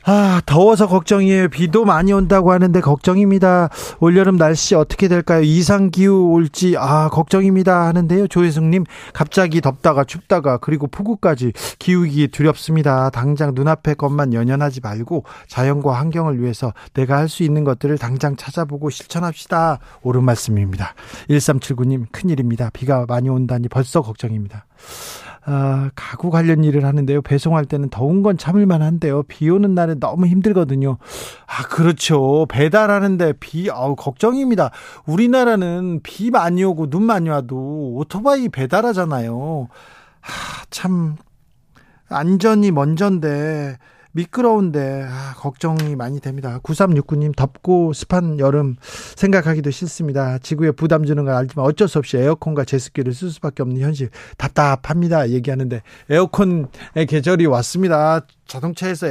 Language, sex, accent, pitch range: Korean, male, native, 135-180 Hz